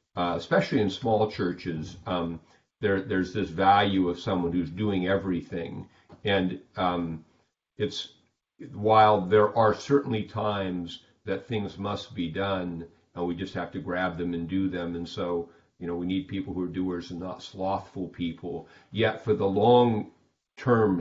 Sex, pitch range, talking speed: male, 85-105 Hz, 160 wpm